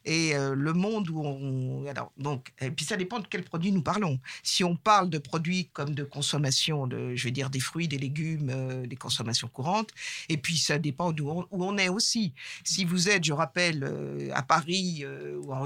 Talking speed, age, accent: 205 wpm, 50-69, French